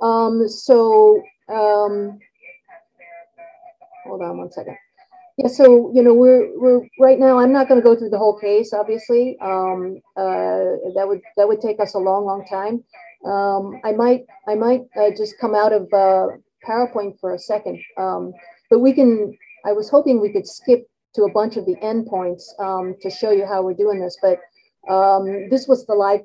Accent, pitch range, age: American, 195-245 Hz, 40-59